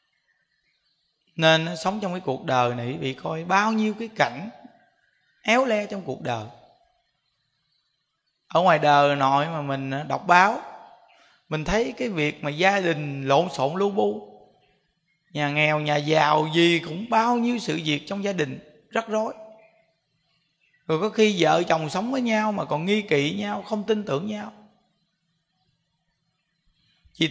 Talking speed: 155 wpm